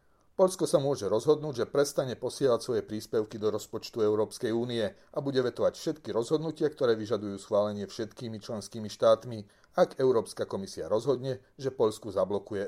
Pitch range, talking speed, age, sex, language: 105-140 Hz, 145 wpm, 40-59, male, Slovak